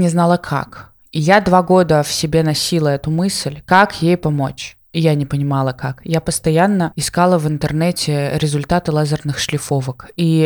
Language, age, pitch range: Russian, 20-39, 145-175 Hz